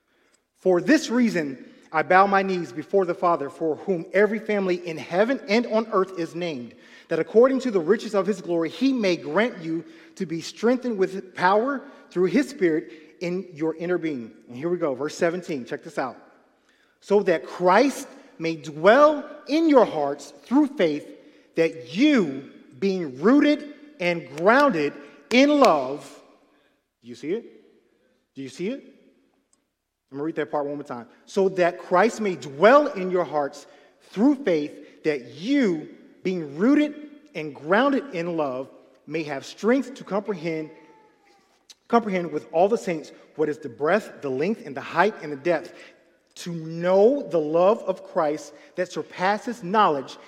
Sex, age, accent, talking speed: male, 30-49, American, 165 wpm